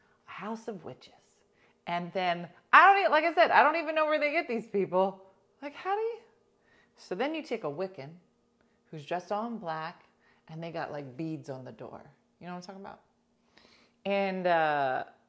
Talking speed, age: 195 wpm, 30-49